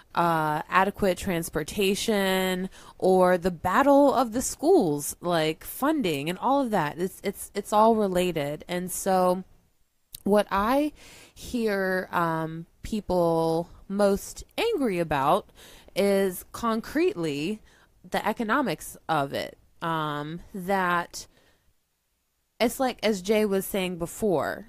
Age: 20-39